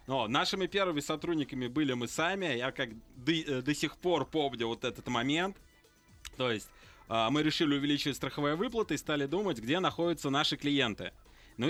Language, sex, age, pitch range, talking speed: Russian, male, 20-39, 125-160 Hz, 165 wpm